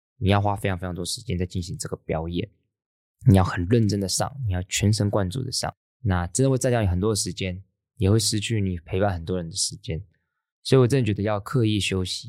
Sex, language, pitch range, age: male, Chinese, 95-130 Hz, 20-39